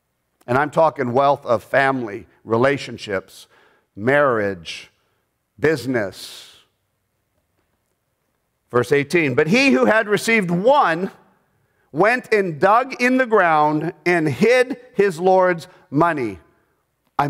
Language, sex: English, male